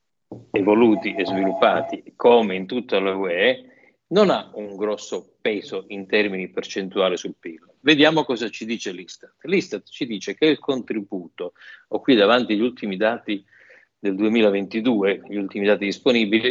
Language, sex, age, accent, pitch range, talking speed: Italian, male, 50-69, native, 100-140 Hz, 145 wpm